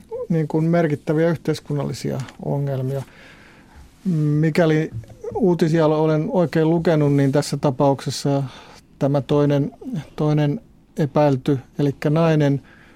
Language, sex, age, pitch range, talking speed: Finnish, male, 50-69, 140-155 Hz, 80 wpm